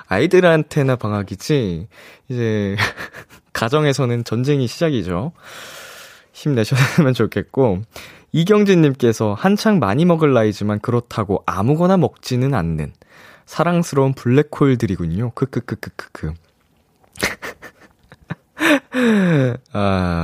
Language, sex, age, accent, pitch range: Korean, male, 20-39, native, 100-150 Hz